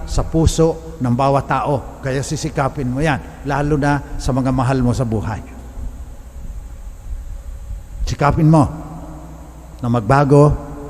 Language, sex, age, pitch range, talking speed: English, male, 50-69, 130-190 Hz, 115 wpm